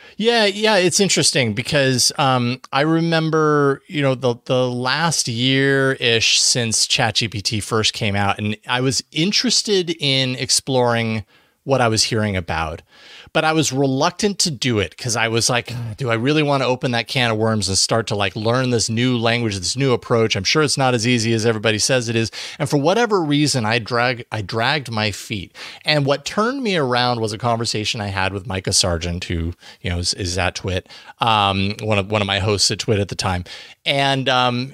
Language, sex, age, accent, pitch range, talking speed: English, male, 30-49, American, 110-155 Hz, 205 wpm